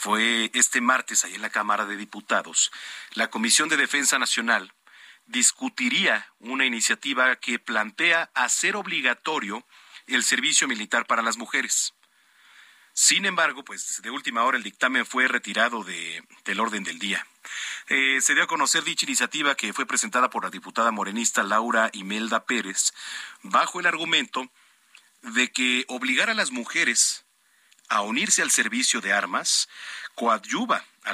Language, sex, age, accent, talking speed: Spanish, male, 40-59, Mexican, 145 wpm